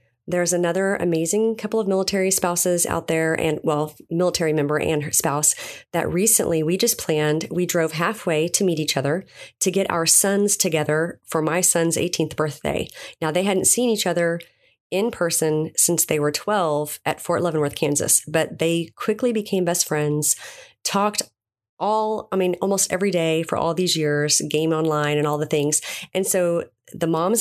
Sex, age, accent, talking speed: female, 30-49, American, 175 wpm